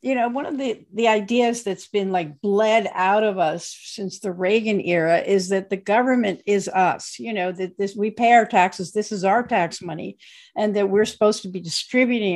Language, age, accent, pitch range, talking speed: English, 50-69, American, 195-245 Hz, 215 wpm